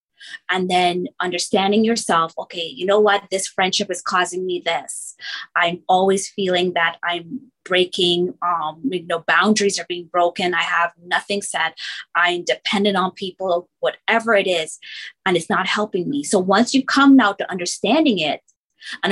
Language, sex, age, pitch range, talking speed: English, female, 20-39, 180-230 Hz, 165 wpm